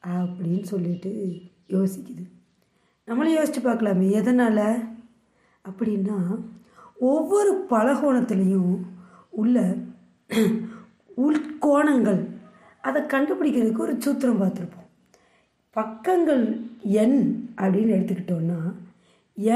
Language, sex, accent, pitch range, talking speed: Tamil, female, native, 195-250 Hz, 70 wpm